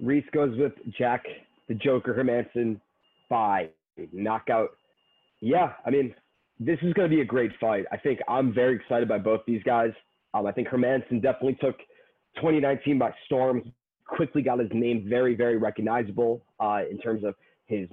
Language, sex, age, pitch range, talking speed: English, male, 30-49, 120-150 Hz, 165 wpm